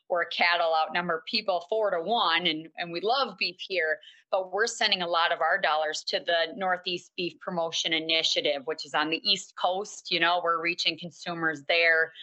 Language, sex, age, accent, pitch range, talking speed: English, female, 30-49, American, 165-205 Hz, 190 wpm